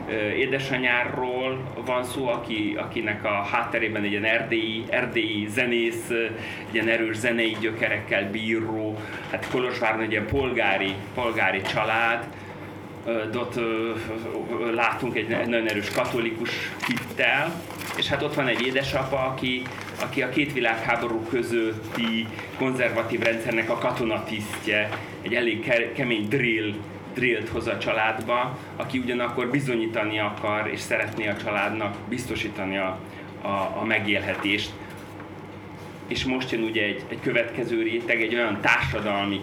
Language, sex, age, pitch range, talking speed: Czech, male, 30-49, 105-120 Hz, 125 wpm